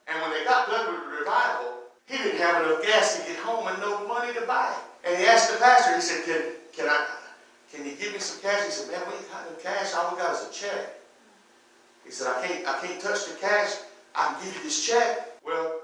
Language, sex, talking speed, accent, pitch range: English, male, 245 wpm, American, 155-250 Hz